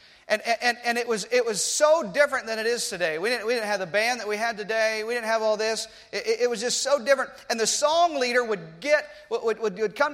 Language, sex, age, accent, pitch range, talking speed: English, male, 40-59, American, 215-265 Hz, 265 wpm